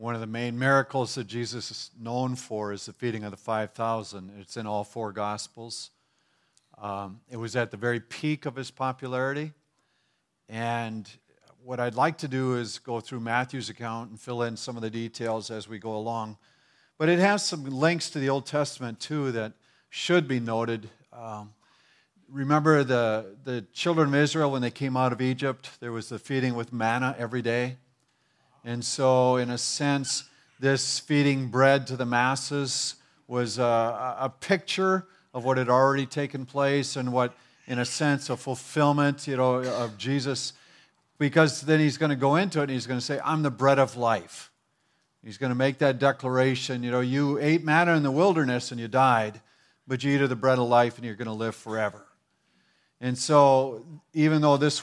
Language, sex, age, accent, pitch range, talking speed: English, male, 50-69, American, 115-145 Hz, 190 wpm